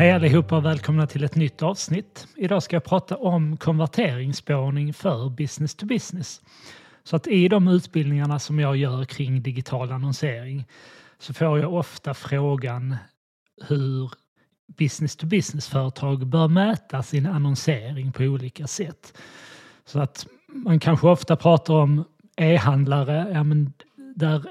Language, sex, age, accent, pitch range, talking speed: Swedish, male, 30-49, native, 135-160 Hz, 140 wpm